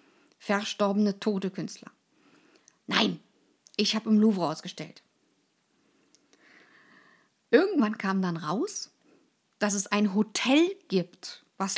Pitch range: 185-245 Hz